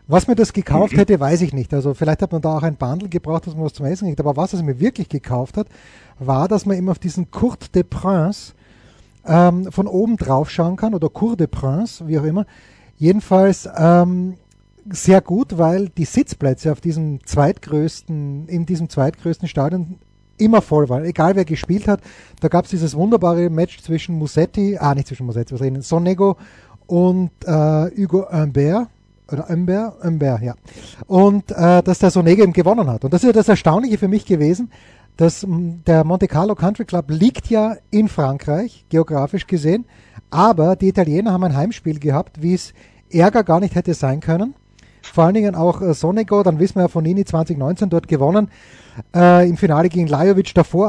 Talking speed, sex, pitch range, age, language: 190 wpm, male, 155-195 Hz, 30-49, English